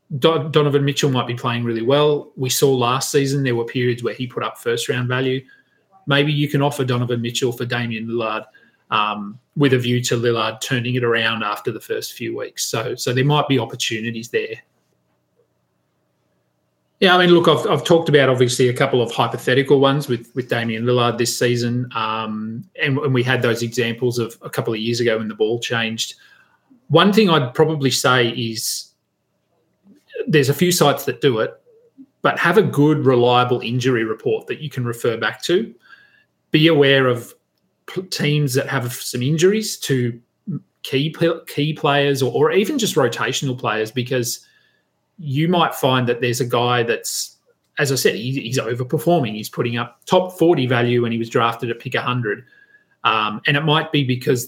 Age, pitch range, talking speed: 30-49, 120-150 Hz, 180 wpm